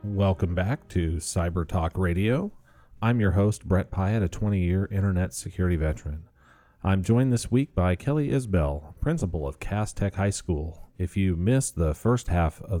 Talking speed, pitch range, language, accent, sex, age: 170 wpm, 85-105 Hz, English, American, male, 40-59